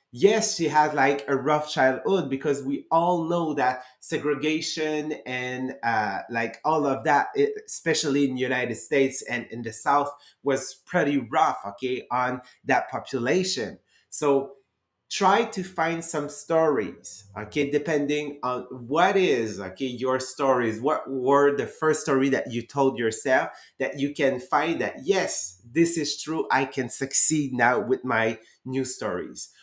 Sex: male